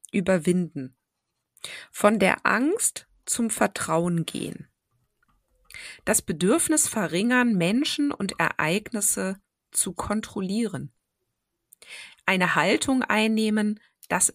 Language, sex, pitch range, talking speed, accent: German, female, 180-260 Hz, 80 wpm, German